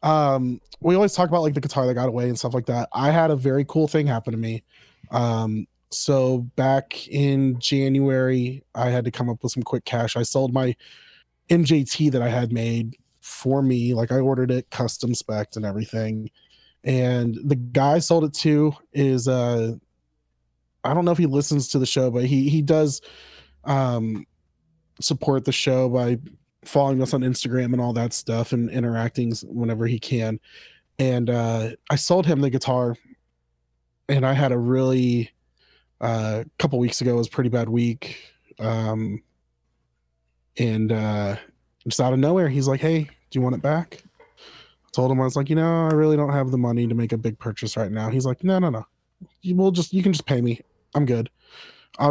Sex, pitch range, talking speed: male, 115-140 Hz, 195 wpm